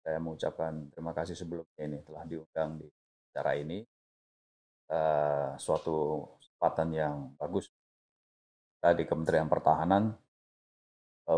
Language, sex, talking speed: Indonesian, male, 115 wpm